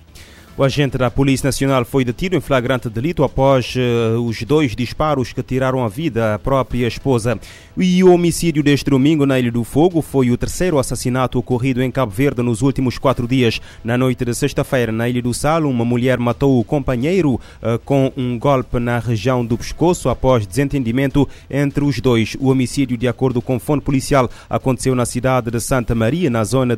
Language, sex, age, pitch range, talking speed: Portuguese, male, 30-49, 120-135 Hz, 185 wpm